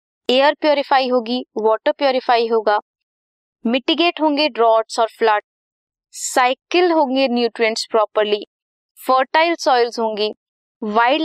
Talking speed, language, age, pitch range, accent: 100 wpm, Hindi, 20-39, 220-285 Hz, native